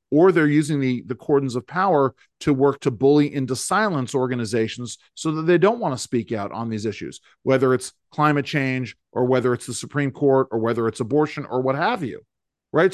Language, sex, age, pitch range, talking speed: English, male, 40-59, 125-160 Hz, 210 wpm